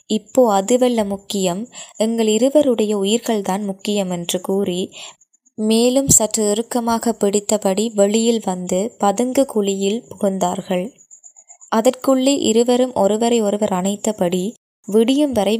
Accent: native